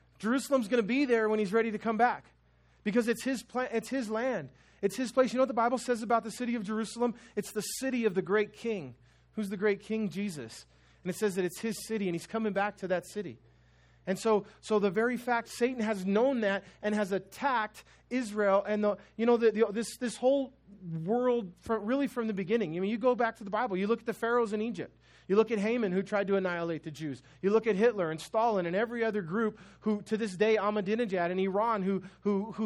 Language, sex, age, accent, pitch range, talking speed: English, male, 30-49, American, 195-230 Hz, 240 wpm